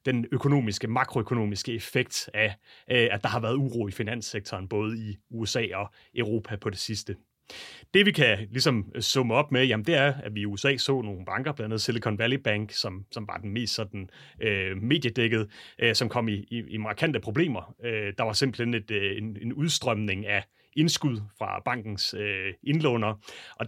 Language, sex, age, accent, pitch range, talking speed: Danish, male, 30-49, native, 105-130 Hz, 190 wpm